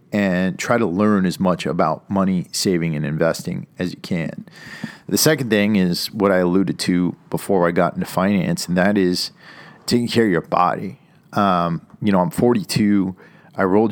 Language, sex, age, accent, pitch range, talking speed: English, male, 40-59, American, 90-105 Hz, 180 wpm